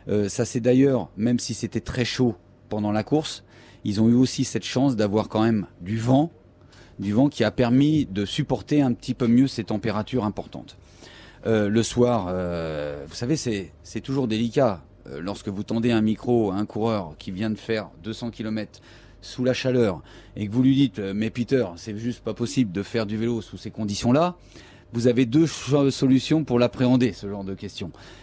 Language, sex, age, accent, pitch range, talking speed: French, male, 30-49, French, 100-130 Hz, 200 wpm